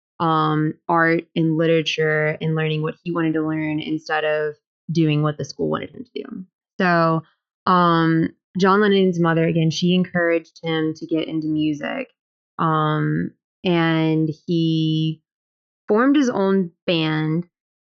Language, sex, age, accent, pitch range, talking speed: English, female, 20-39, American, 160-180 Hz, 135 wpm